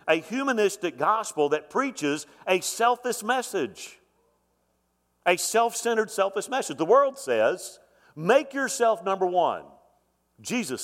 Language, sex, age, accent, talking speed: English, male, 50-69, American, 110 wpm